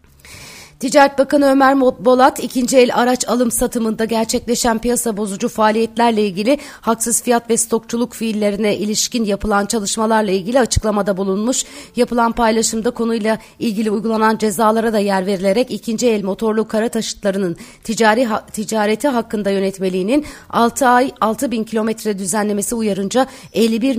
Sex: female